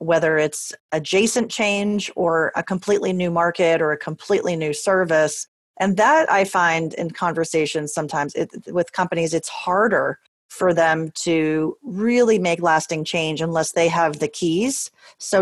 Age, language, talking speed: 30-49, English, 150 wpm